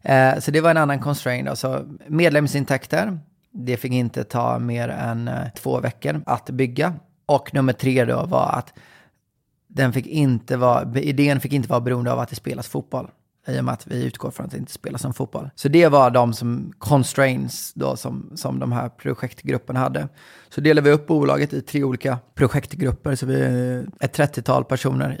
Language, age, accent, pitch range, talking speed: Swedish, 30-49, native, 120-140 Hz, 175 wpm